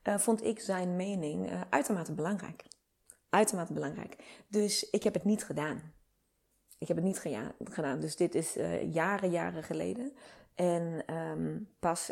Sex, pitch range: female, 165-210 Hz